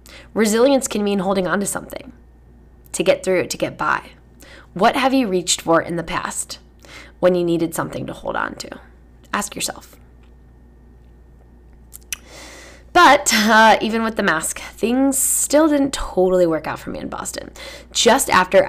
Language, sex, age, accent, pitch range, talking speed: English, female, 10-29, American, 160-215 Hz, 155 wpm